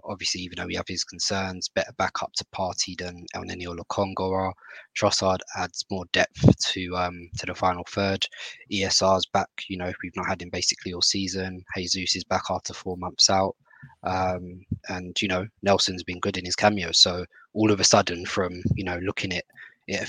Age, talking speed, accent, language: 20-39, 195 wpm, British, English